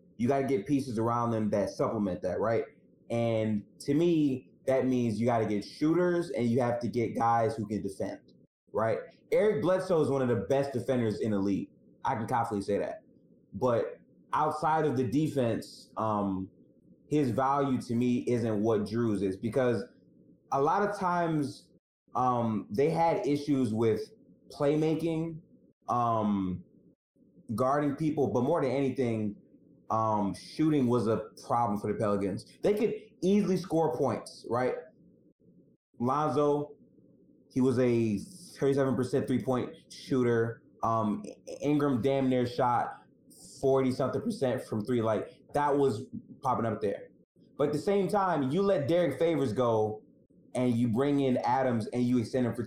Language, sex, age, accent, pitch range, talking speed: English, male, 20-39, American, 115-150 Hz, 155 wpm